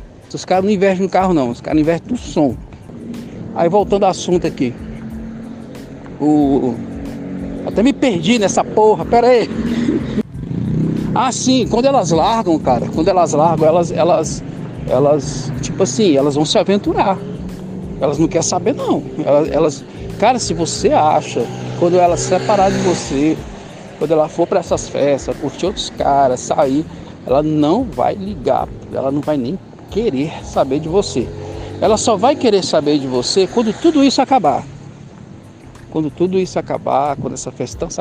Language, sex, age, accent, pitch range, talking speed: Portuguese, male, 60-79, Brazilian, 135-195 Hz, 160 wpm